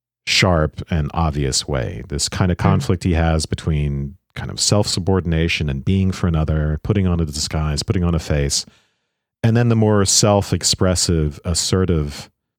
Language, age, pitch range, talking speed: English, 40-59, 75-95 Hz, 155 wpm